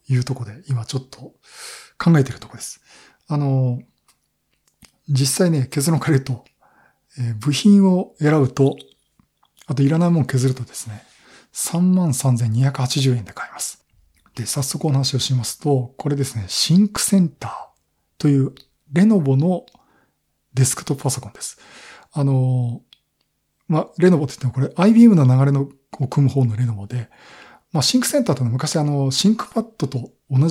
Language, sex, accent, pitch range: Japanese, male, native, 125-155 Hz